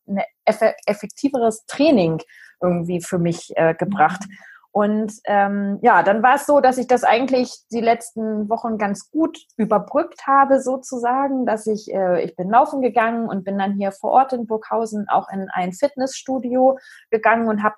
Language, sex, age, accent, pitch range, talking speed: German, female, 20-39, German, 200-250 Hz, 160 wpm